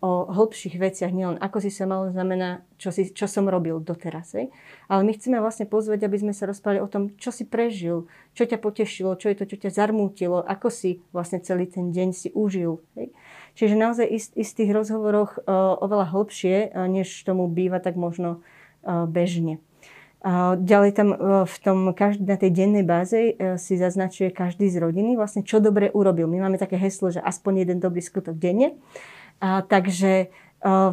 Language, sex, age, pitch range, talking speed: Slovak, female, 30-49, 185-210 Hz, 180 wpm